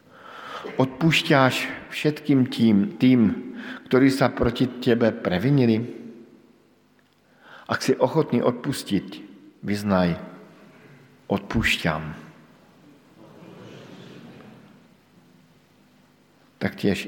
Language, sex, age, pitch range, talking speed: Slovak, male, 50-69, 100-120 Hz, 55 wpm